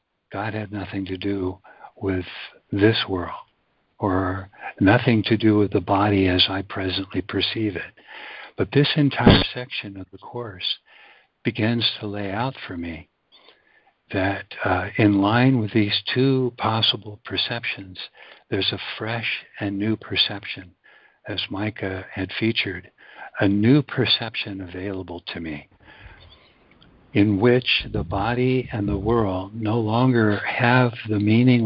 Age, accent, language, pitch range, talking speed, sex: 60-79, American, English, 95-120 Hz, 135 wpm, male